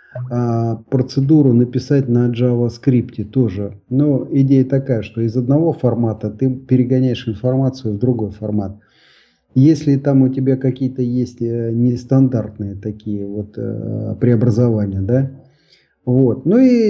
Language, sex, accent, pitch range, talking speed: Russian, male, native, 115-140 Hz, 115 wpm